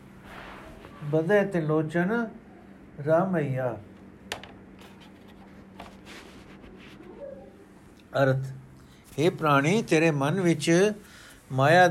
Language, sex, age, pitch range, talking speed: Punjabi, male, 60-79, 140-170 Hz, 55 wpm